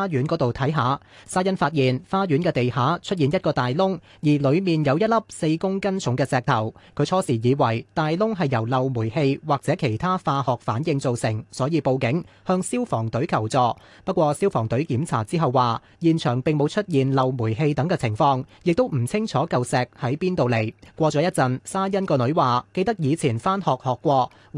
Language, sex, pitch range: Chinese, male, 130-170 Hz